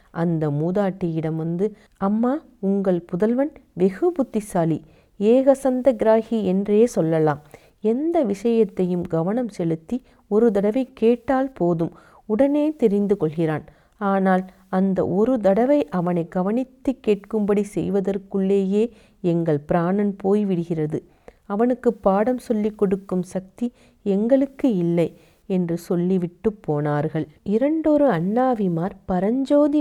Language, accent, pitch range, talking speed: Tamil, native, 175-225 Hz, 95 wpm